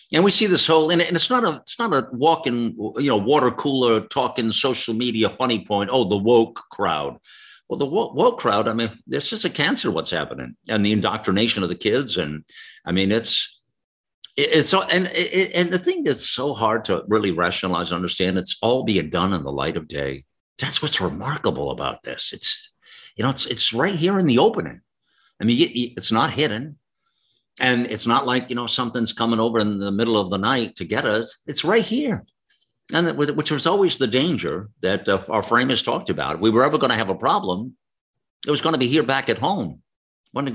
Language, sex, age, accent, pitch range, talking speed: English, male, 50-69, American, 105-150 Hz, 220 wpm